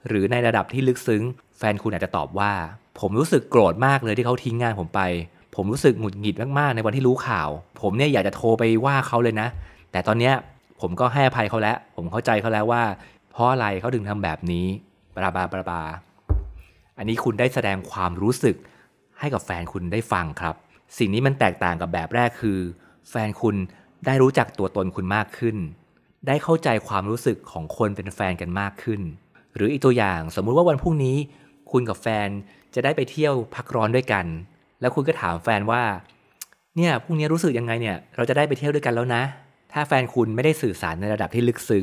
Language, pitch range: Thai, 100-130 Hz